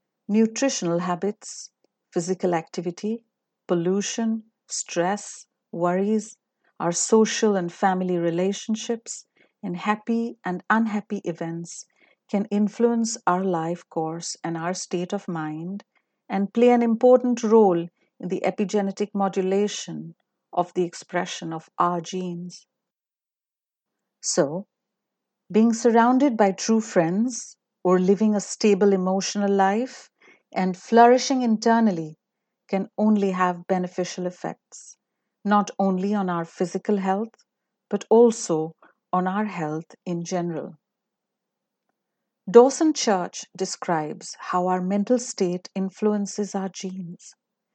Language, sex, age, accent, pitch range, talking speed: English, female, 50-69, Indian, 180-225 Hz, 105 wpm